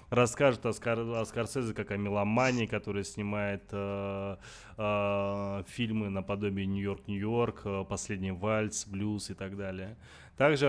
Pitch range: 100-115 Hz